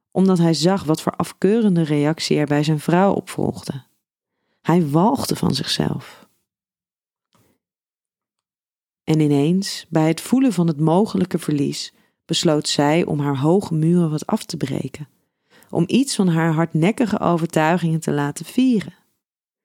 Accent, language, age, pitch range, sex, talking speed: Dutch, Dutch, 30-49, 150-190 Hz, female, 135 wpm